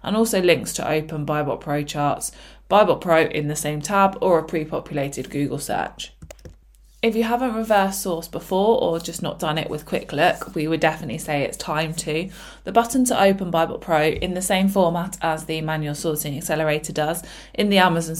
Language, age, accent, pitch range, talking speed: English, 20-39, British, 150-185 Hz, 195 wpm